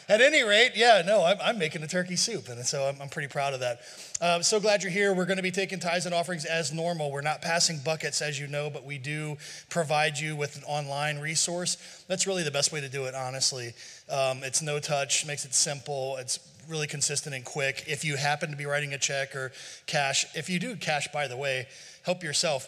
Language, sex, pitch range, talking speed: English, male, 140-165 Hz, 240 wpm